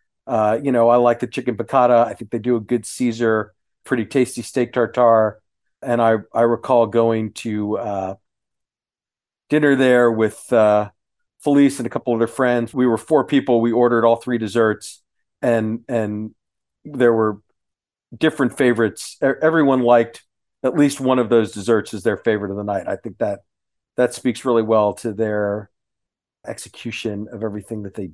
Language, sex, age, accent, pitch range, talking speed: English, male, 40-59, American, 110-130 Hz, 170 wpm